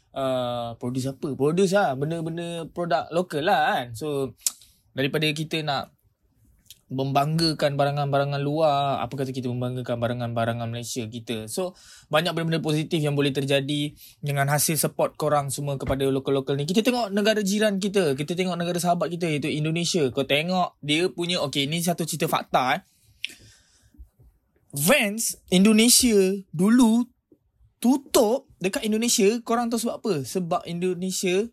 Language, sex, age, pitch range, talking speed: Malay, male, 20-39, 125-175 Hz, 135 wpm